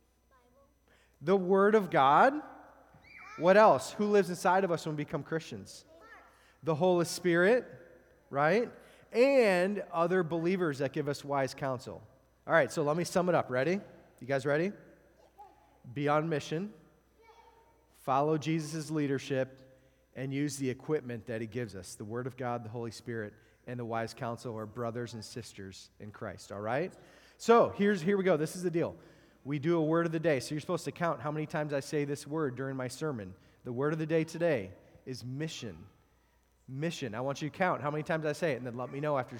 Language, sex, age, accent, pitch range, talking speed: English, male, 30-49, American, 135-170 Hz, 195 wpm